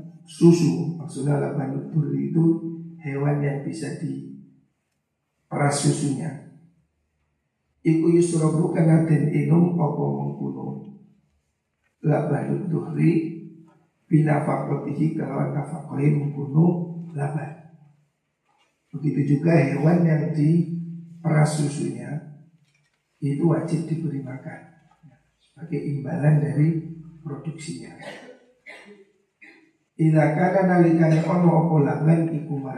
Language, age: Indonesian, 60-79